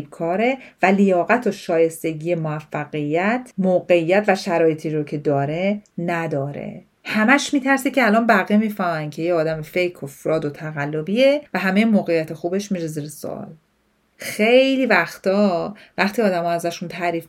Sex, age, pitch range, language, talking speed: female, 40-59, 170-220 Hz, Persian, 140 wpm